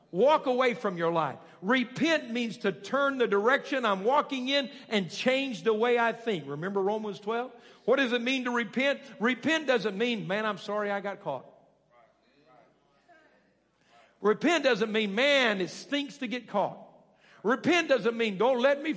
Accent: American